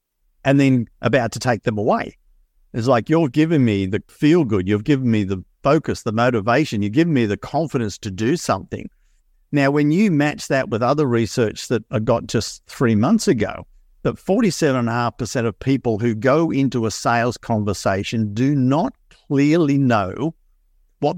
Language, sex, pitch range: English, male, 105-135 Hz